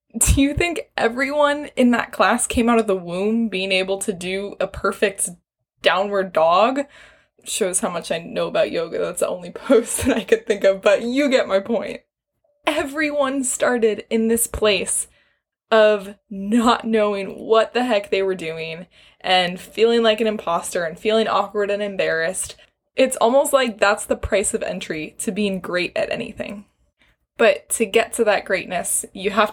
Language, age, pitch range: English, 10-29, 195-255 Hz